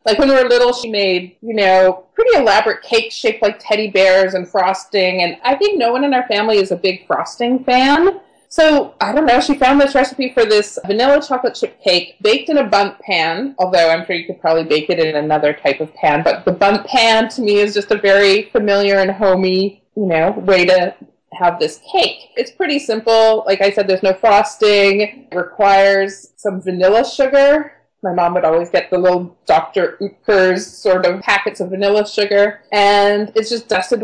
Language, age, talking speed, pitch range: English, 30-49, 205 wpm, 190-245 Hz